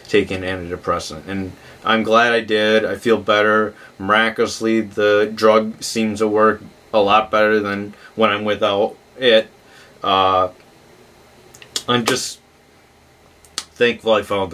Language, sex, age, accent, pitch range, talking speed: English, male, 30-49, American, 105-125 Hz, 125 wpm